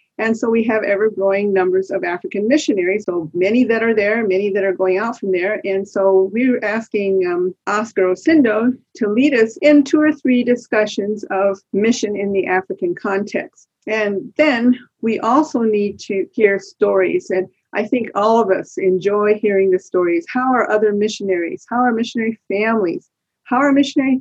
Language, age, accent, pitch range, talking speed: English, 50-69, American, 190-245 Hz, 175 wpm